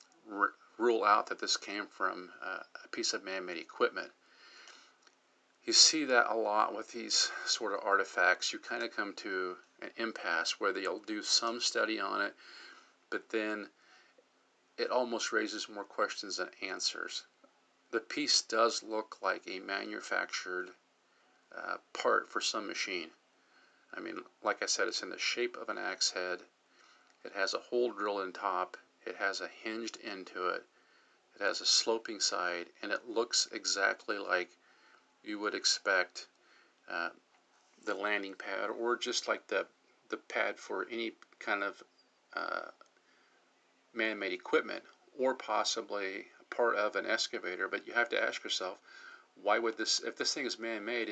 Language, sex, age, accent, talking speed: English, male, 50-69, American, 155 wpm